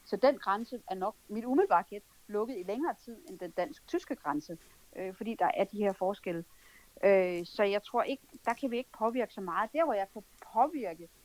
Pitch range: 190-245 Hz